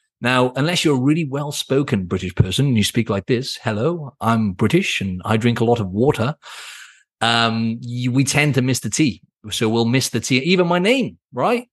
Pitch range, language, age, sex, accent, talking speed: 115-155 Hz, English, 30-49, male, British, 205 wpm